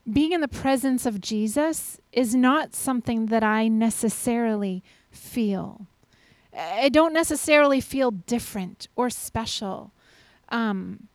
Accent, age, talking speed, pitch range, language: American, 30-49, 115 wpm, 210-270 Hz, English